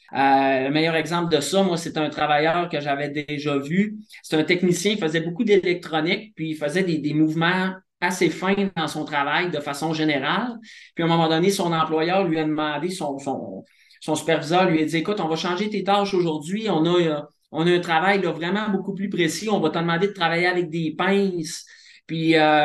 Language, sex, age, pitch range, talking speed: French, male, 30-49, 155-195 Hz, 215 wpm